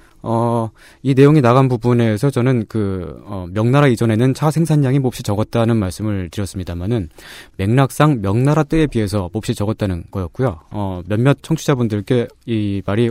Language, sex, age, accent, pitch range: Korean, male, 20-39, native, 100-135 Hz